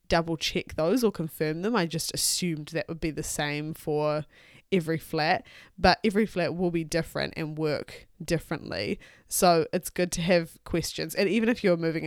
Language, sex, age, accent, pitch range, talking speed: English, female, 20-39, Australian, 160-195 Hz, 185 wpm